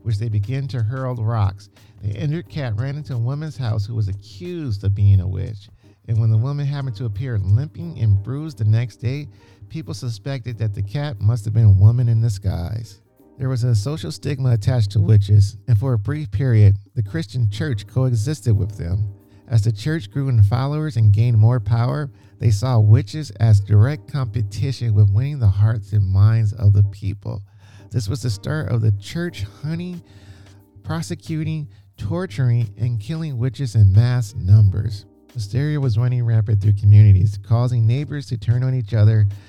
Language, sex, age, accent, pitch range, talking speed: English, male, 50-69, American, 100-125 Hz, 180 wpm